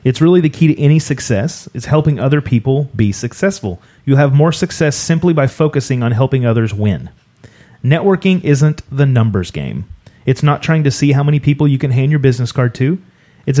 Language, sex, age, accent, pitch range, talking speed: English, male, 30-49, American, 115-145 Hz, 200 wpm